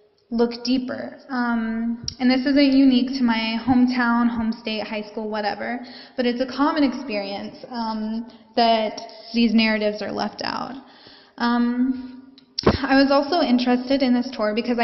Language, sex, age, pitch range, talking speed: English, female, 10-29, 215-255 Hz, 150 wpm